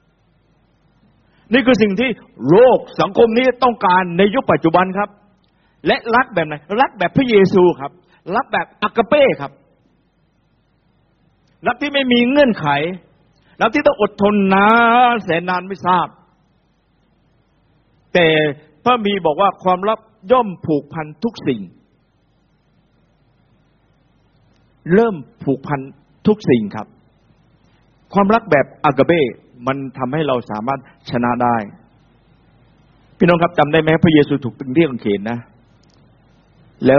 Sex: male